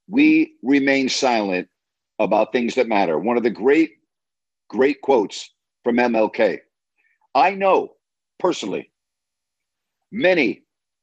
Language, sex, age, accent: English, male, 50-69, American